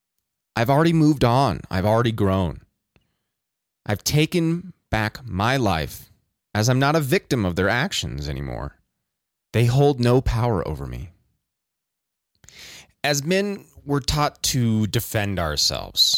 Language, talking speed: English, 125 wpm